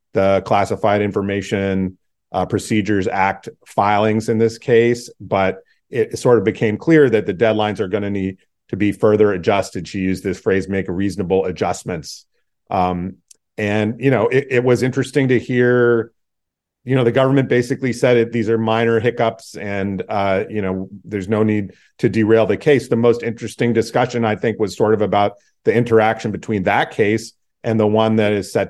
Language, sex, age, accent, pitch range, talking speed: English, male, 40-59, American, 95-115 Hz, 180 wpm